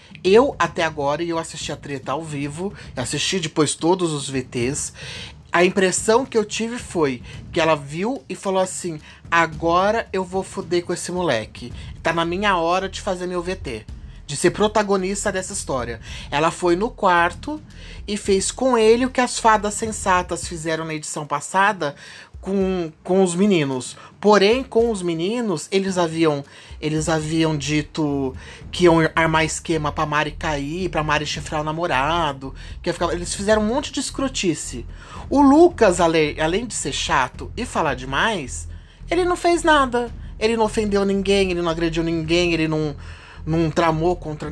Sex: male